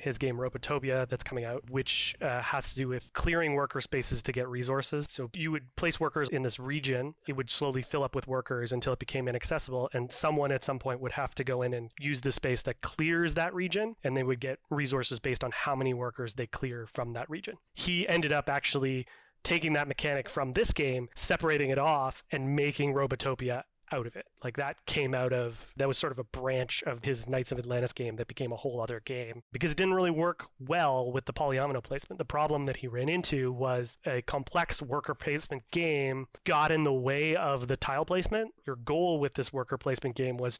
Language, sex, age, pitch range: English, male, 30-49, 125-150 Hz